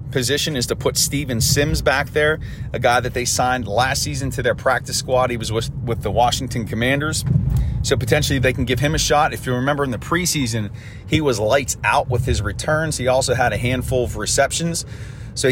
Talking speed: 215 wpm